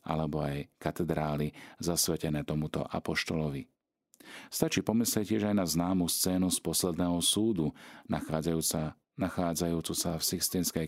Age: 40-59